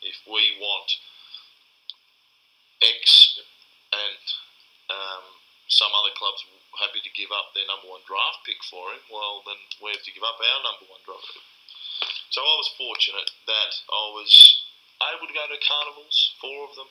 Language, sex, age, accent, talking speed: English, male, 30-49, Australian, 165 wpm